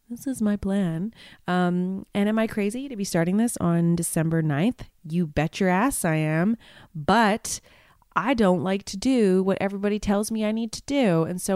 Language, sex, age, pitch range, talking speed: English, female, 30-49, 160-215 Hz, 195 wpm